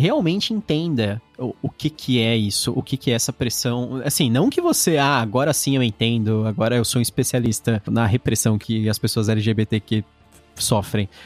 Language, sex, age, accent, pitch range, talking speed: Portuguese, male, 20-39, Brazilian, 115-140 Hz, 185 wpm